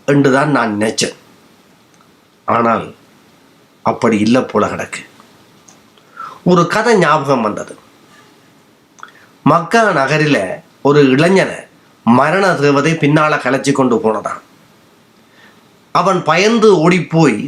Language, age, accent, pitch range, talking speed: Tamil, 30-49, native, 145-185 Hz, 80 wpm